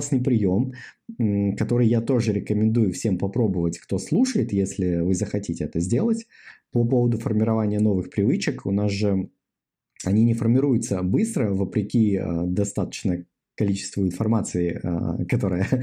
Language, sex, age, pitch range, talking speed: Russian, male, 20-39, 100-125 Hz, 120 wpm